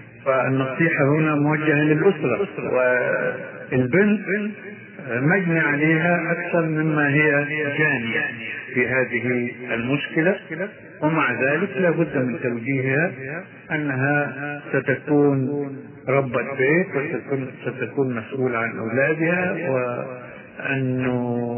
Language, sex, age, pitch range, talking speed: Arabic, male, 50-69, 130-155 Hz, 80 wpm